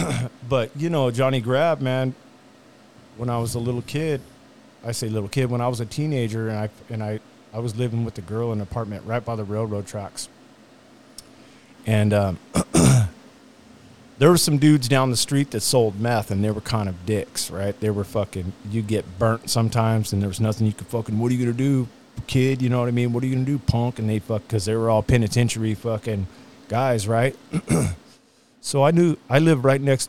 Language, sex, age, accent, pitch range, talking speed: English, male, 40-59, American, 105-125 Hz, 220 wpm